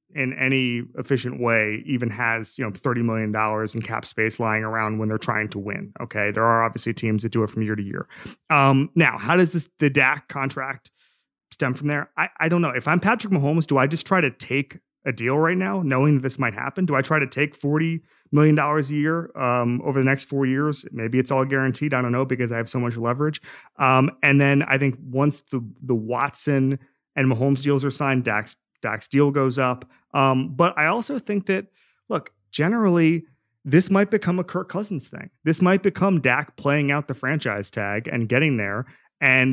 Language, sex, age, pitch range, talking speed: English, male, 30-49, 115-150 Hz, 215 wpm